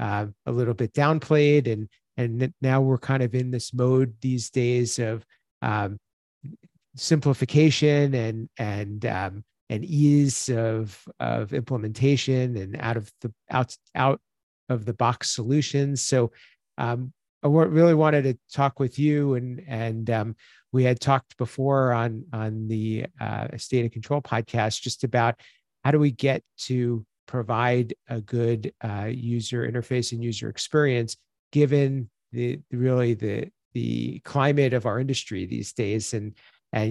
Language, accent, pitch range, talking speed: English, American, 115-135 Hz, 145 wpm